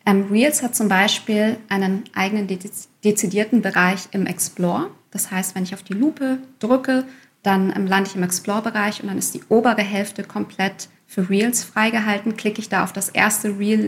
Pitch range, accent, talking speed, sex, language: 195-235 Hz, German, 175 wpm, female, German